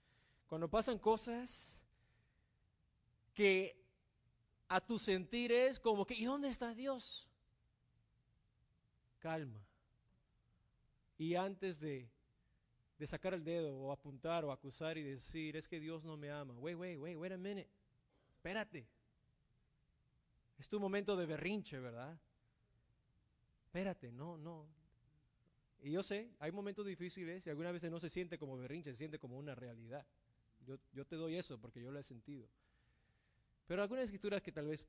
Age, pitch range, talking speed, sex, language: 30-49, 140-220 Hz, 145 wpm, male, English